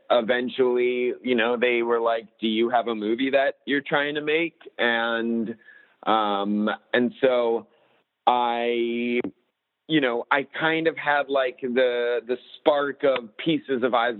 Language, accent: English, American